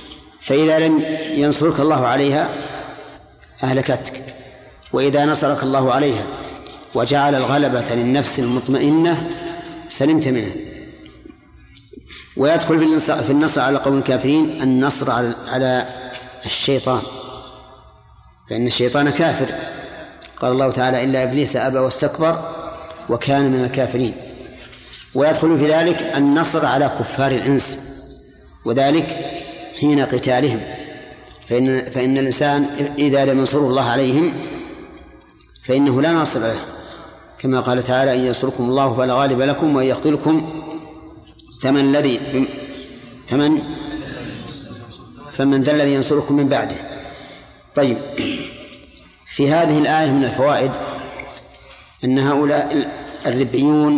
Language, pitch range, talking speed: Arabic, 130-150 Hz, 100 wpm